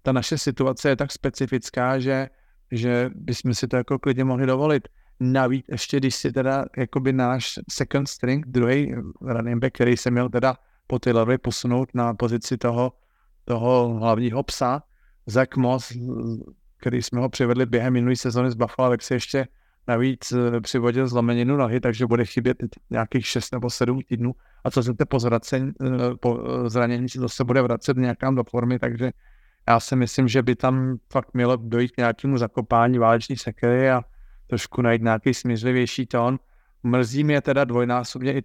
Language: Slovak